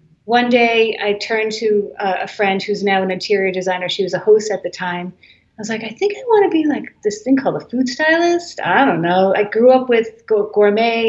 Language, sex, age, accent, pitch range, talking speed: English, female, 40-59, American, 190-225 Hz, 235 wpm